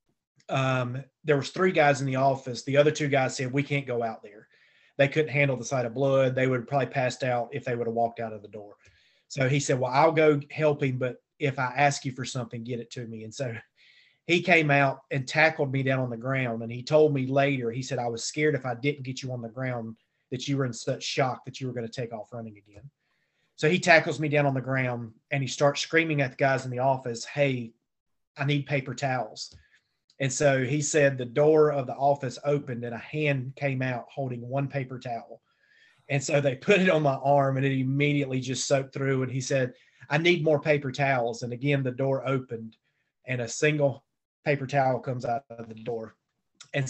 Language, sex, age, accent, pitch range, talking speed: English, male, 30-49, American, 125-145 Hz, 235 wpm